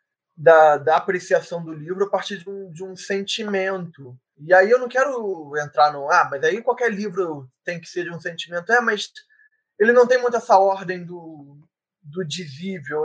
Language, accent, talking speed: Portuguese, Brazilian, 190 wpm